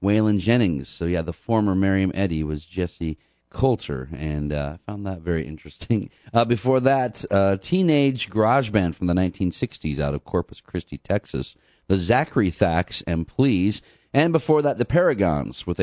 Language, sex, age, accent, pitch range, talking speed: English, male, 40-59, American, 85-115 Hz, 165 wpm